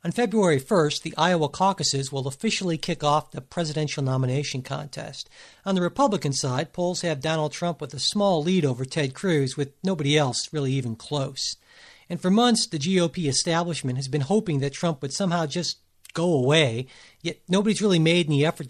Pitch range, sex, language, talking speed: 140-175 Hz, male, English, 185 wpm